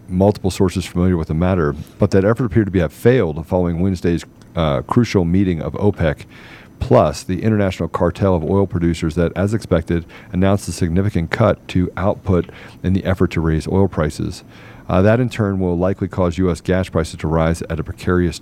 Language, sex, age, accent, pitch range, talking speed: English, male, 40-59, American, 85-105 Hz, 190 wpm